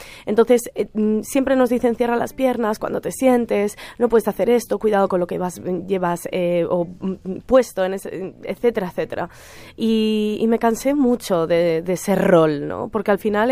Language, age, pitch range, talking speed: Spanish, 20-39, 195-250 Hz, 185 wpm